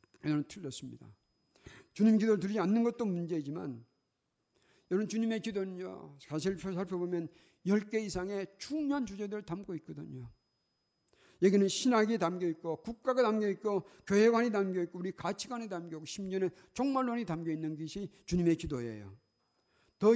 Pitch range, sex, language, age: 145-200 Hz, male, Korean, 50-69